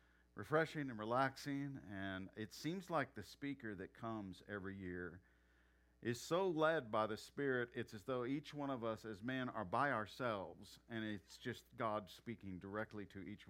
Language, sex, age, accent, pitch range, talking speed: English, male, 50-69, American, 90-130 Hz, 175 wpm